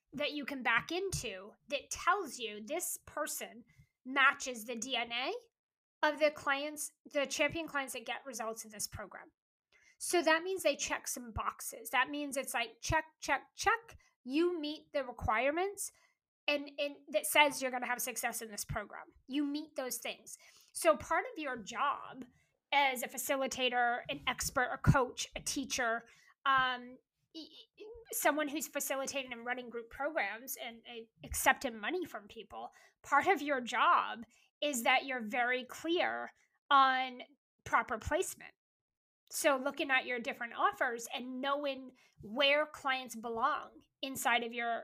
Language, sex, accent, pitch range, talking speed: English, female, American, 245-300 Hz, 155 wpm